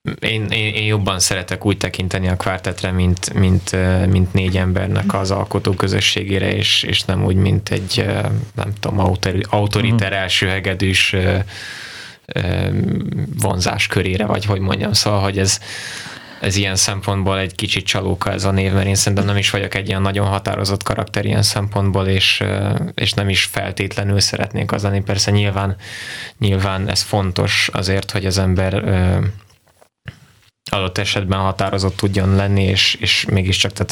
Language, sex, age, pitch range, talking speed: Hungarian, male, 20-39, 95-105 Hz, 150 wpm